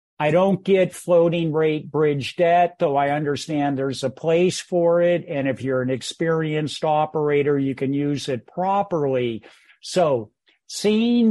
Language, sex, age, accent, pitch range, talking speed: English, male, 50-69, American, 145-180 Hz, 150 wpm